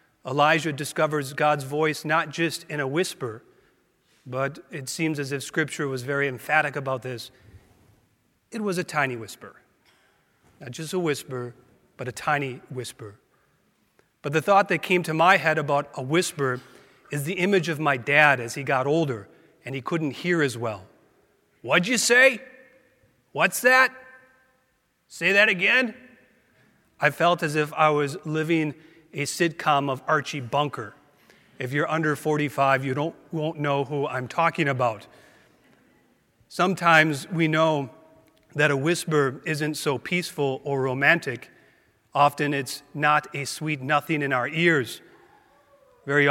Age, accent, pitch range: 40-59, American, 135-165 Hz